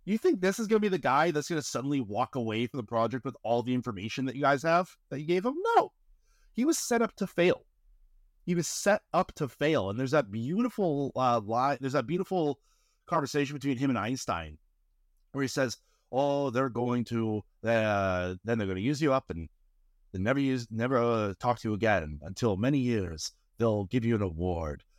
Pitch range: 95-140 Hz